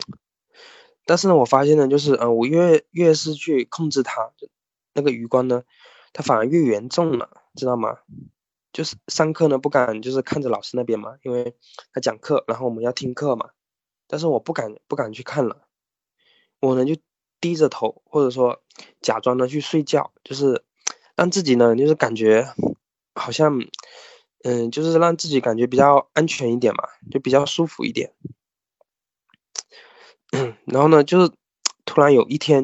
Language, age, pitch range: Chinese, 20-39, 125-160 Hz